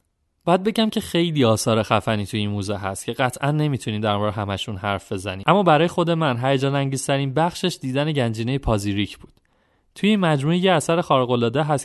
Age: 30-49